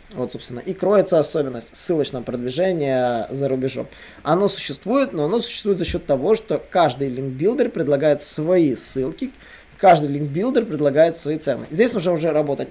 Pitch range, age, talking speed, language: 135-190 Hz, 20-39, 160 wpm, Russian